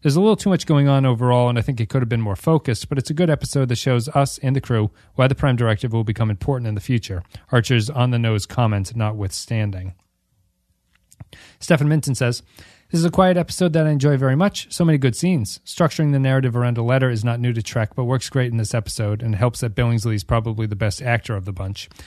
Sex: male